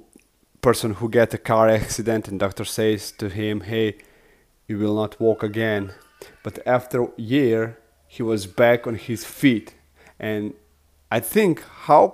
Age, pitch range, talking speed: 30-49, 100-130 Hz, 155 wpm